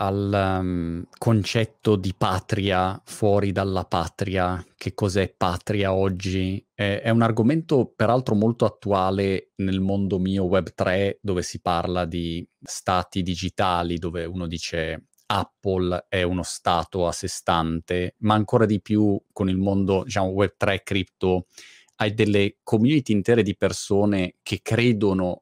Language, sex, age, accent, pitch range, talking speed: Italian, male, 30-49, native, 95-110 Hz, 140 wpm